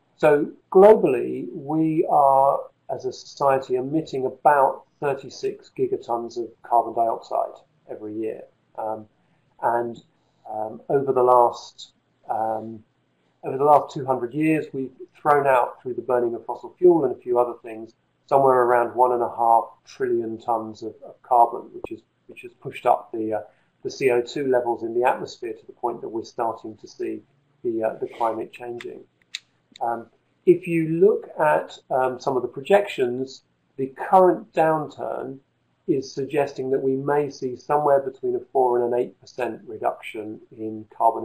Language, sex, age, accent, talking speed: English, male, 40-59, British, 160 wpm